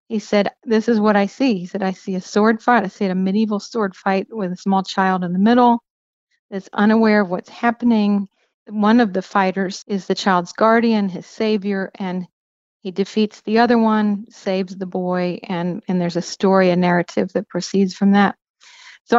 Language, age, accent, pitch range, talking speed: English, 40-59, American, 195-220 Hz, 200 wpm